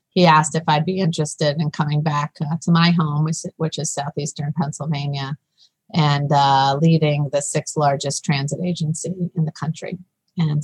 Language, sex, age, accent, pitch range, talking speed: English, female, 30-49, American, 145-165 Hz, 170 wpm